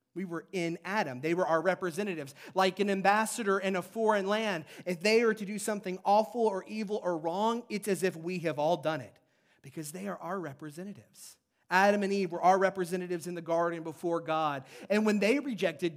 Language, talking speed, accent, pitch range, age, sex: English, 205 wpm, American, 155-205 Hz, 40-59, male